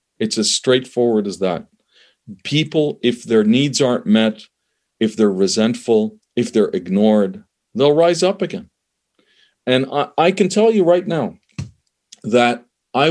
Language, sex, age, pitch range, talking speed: English, male, 40-59, 110-150 Hz, 140 wpm